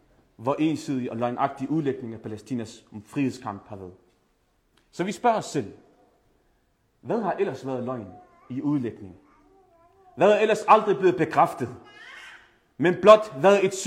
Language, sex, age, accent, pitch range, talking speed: Danish, male, 30-49, native, 135-200 Hz, 130 wpm